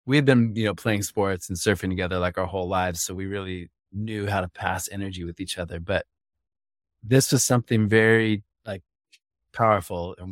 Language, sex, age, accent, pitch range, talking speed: English, male, 20-39, American, 90-110 Hz, 185 wpm